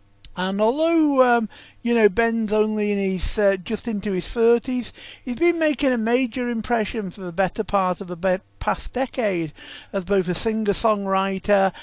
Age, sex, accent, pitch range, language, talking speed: 50-69, male, British, 180-230 Hz, English, 160 wpm